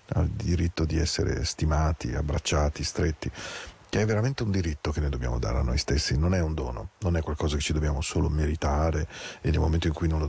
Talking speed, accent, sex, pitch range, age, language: 220 wpm, Italian, male, 75-90 Hz, 40-59, Spanish